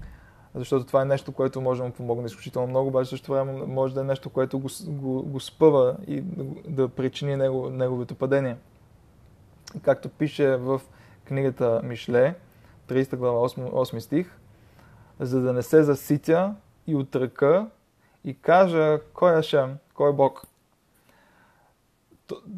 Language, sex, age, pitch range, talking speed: Bulgarian, male, 20-39, 130-150 Hz, 135 wpm